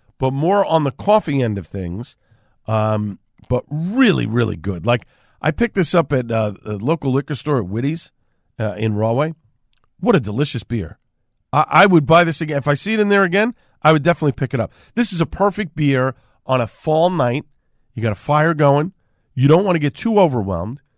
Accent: American